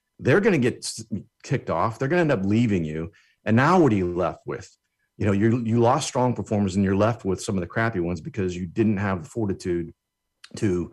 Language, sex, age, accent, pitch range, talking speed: English, male, 40-59, American, 95-120 Hz, 235 wpm